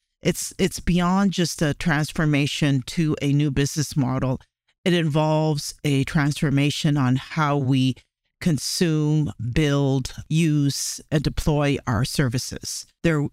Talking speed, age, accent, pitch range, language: 115 wpm, 50-69, American, 125-155 Hz, English